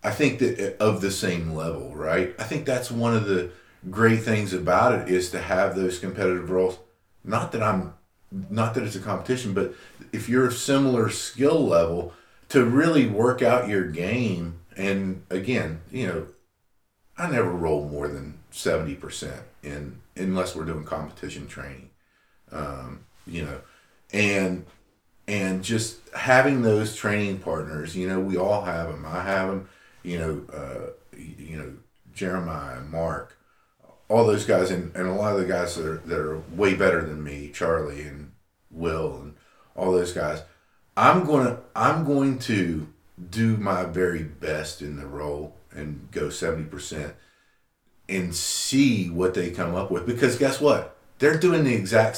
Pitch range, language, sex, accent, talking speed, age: 85-110 Hz, English, male, American, 165 wpm, 50-69